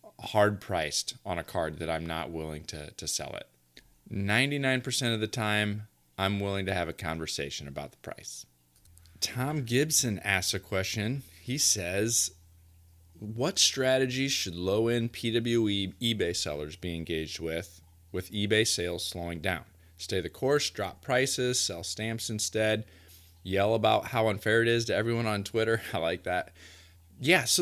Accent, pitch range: American, 85-115 Hz